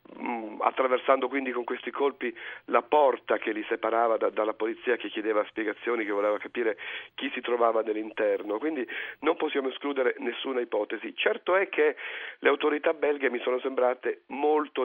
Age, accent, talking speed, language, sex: 40-59, native, 155 wpm, Italian, male